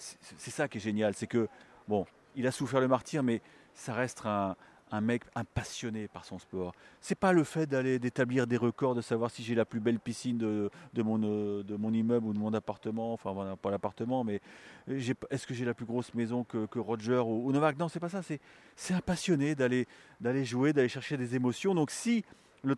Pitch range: 115-165 Hz